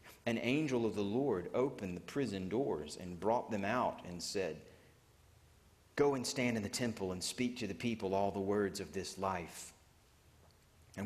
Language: English